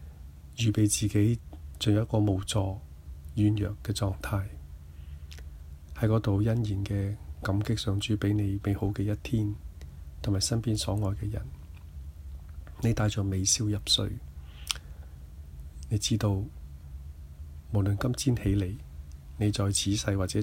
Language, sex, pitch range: Chinese, male, 75-105 Hz